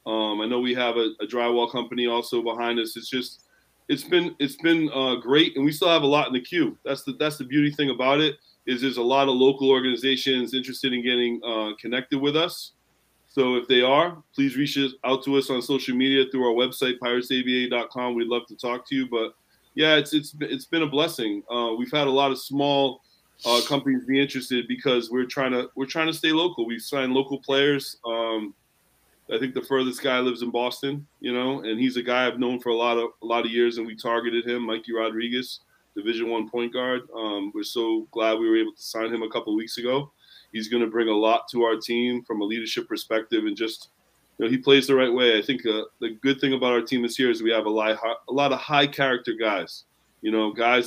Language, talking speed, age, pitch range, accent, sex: English, 240 wpm, 20-39, 120-140 Hz, American, male